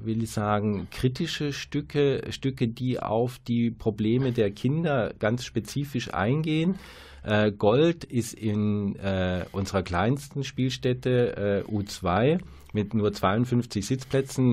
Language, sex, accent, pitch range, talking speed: German, male, German, 100-120 Hz, 105 wpm